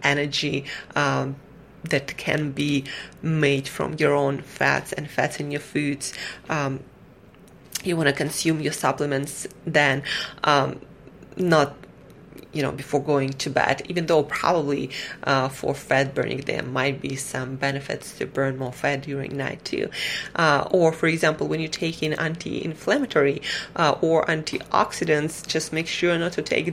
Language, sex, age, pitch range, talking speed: English, female, 30-49, 145-165 Hz, 155 wpm